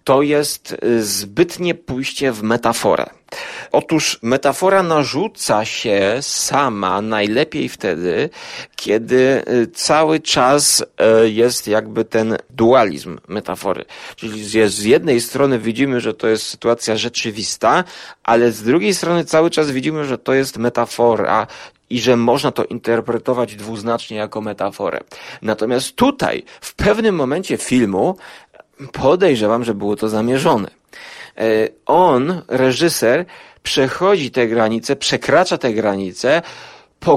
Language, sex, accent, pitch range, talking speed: Polish, male, native, 110-160 Hz, 115 wpm